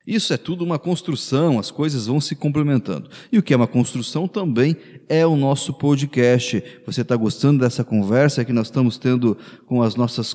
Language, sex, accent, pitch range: Portuguese, male, Brazilian, 120-165 Hz